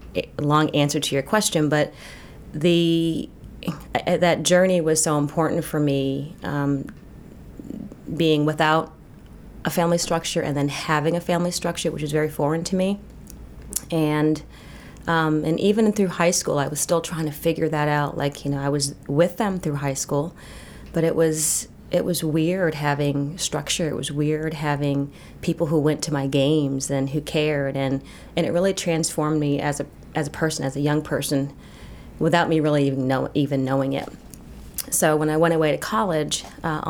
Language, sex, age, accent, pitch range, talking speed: English, female, 30-49, American, 145-170 Hz, 175 wpm